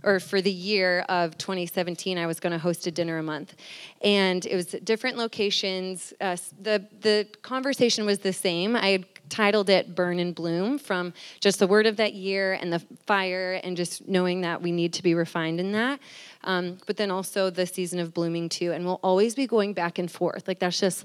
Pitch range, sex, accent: 175-220 Hz, female, American